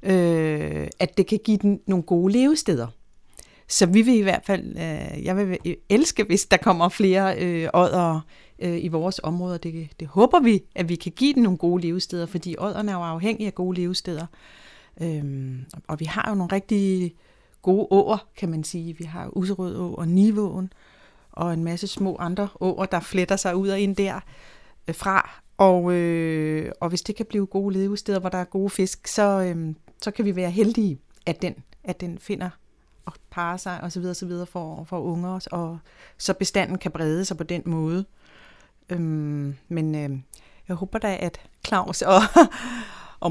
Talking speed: 185 wpm